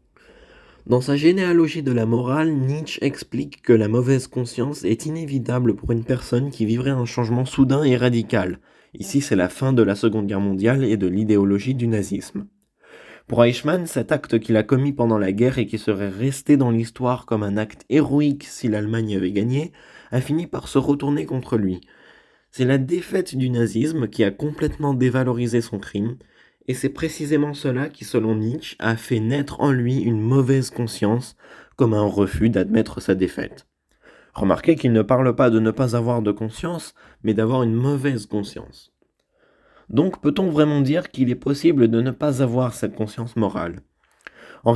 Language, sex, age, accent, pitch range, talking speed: French, male, 20-39, French, 110-135 Hz, 175 wpm